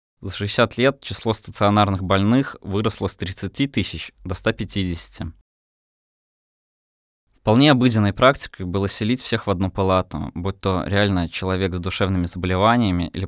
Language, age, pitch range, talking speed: Russian, 20-39, 90-110 Hz, 130 wpm